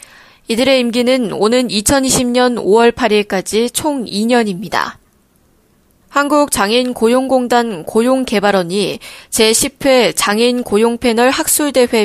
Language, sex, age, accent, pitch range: Korean, female, 20-39, native, 205-255 Hz